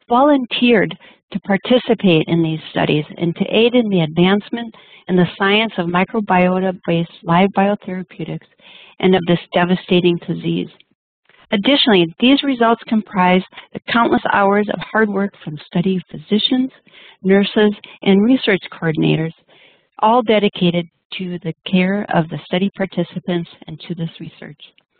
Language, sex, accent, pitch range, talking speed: English, female, American, 175-215 Hz, 130 wpm